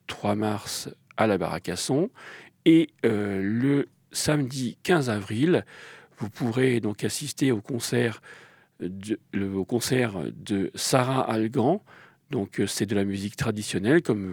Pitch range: 105-140 Hz